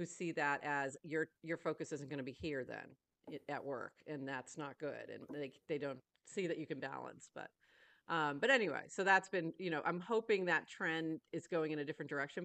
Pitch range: 155-200 Hz